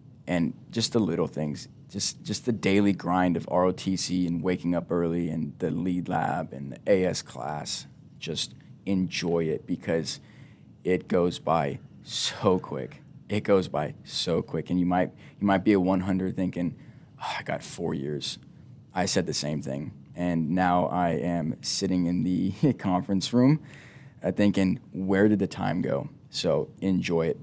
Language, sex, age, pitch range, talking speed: English, male, 20-39, 85-100 Hz, 165 wpm